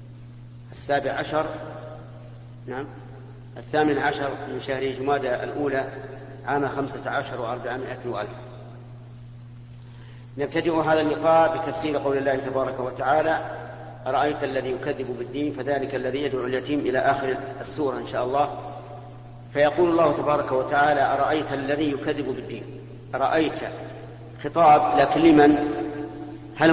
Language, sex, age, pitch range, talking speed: Arabic, male, 50-69, 120-145 Hz, 110 wpm